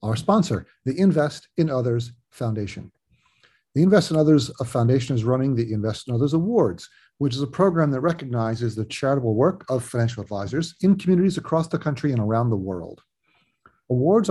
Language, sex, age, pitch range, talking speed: English, male, 40-59, 115-150 Hz, 170 wpm